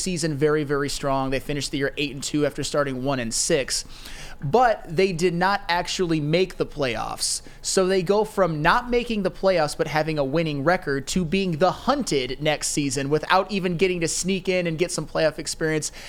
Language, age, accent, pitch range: English, 20-39, American, 150-190 Hz